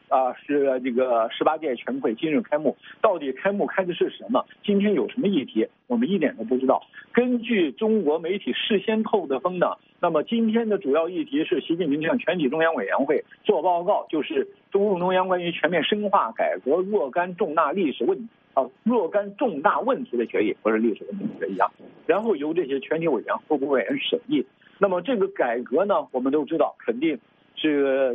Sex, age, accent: male, 60-79, Chinese